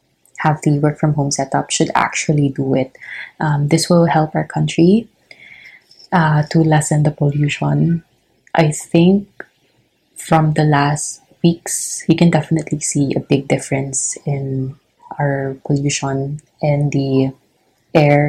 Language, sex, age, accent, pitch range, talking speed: Filipino, female, 20-39, native, 140-160 Hz, 125 wpm